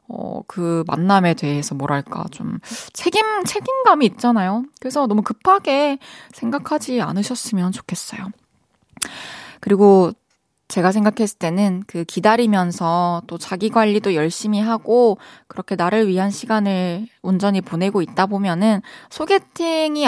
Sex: female